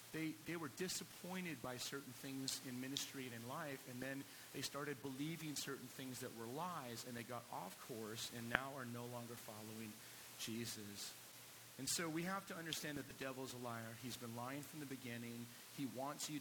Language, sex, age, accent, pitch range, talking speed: English, male, 40-59, American, 120-145 Hz, 200 wpm